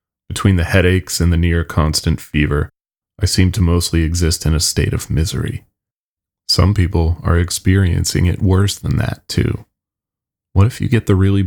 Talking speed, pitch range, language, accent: 165 wpm, 85-105 Hz, English, American